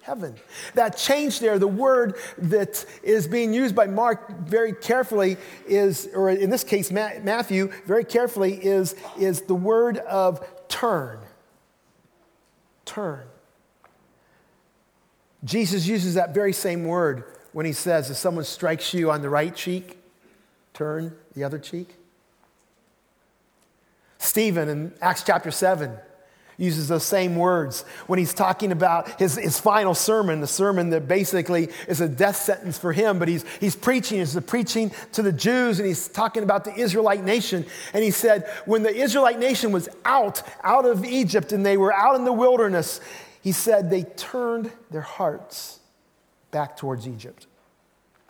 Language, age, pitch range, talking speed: English, 50-69, 170-215 Hz, 150 wpm